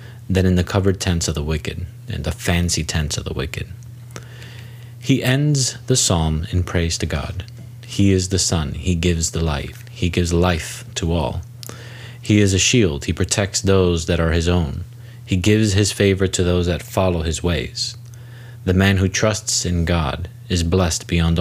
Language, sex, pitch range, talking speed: English, male, 85-120 Hz, 185 wpm